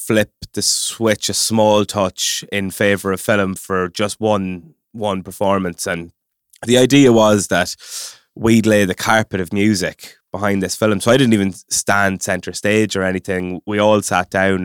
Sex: male